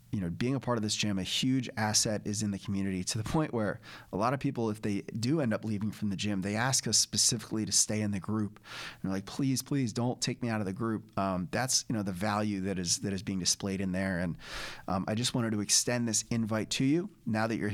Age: 30-49